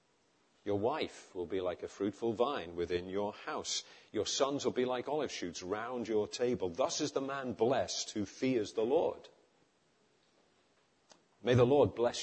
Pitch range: 115-140 Hz